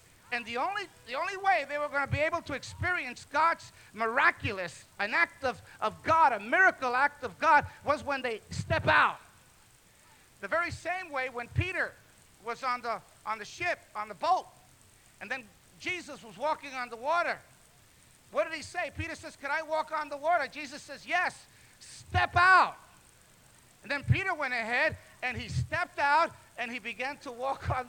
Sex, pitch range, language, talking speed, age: male, 245-335 Hz, English, 185 wpm, 50-69